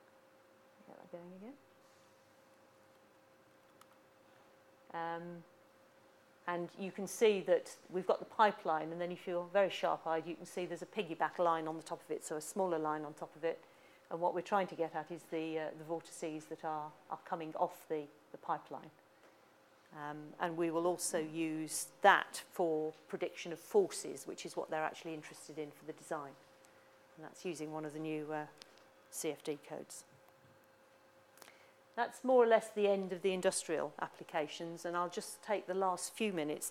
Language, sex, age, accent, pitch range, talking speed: English, female, 40-59, British, 160-195 Hz, 175 wpm